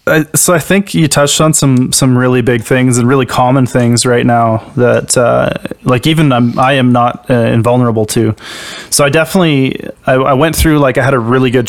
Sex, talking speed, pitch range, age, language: male, 210 wpm, 120-135 Hz, 20-39, English